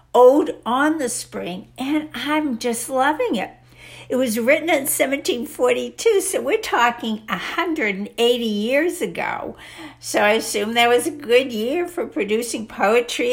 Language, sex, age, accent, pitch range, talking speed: English, female, 60-79, American, 215-280 Hz, 140 wpm